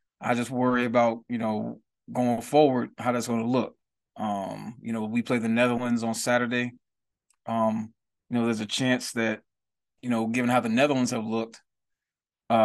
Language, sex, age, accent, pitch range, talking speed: English, male, 20-39, American, 115-130 Hz, 180 wpm